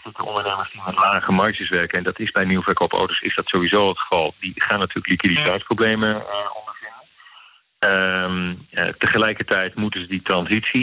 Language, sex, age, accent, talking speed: Dutch, male, 40-59, Dutch, 170 wpm